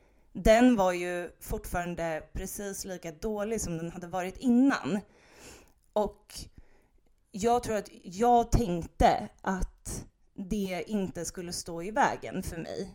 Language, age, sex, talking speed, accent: Swedish, 30-49, female, 125 wpm, native